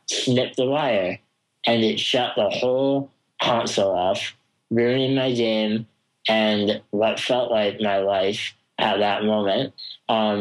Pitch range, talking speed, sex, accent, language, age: 105-125 Hz, 135 wpm, male, American, English, 20-39